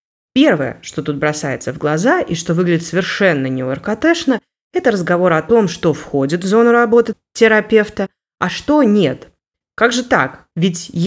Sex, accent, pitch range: female, native, 160-220 Hz